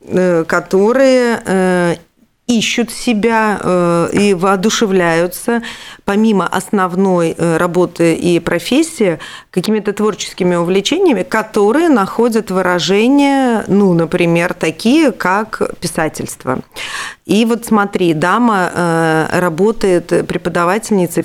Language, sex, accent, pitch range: Russian, female, native, 165-210 Hz